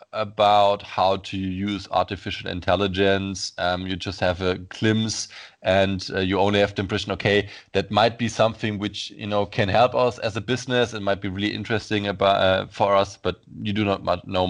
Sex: male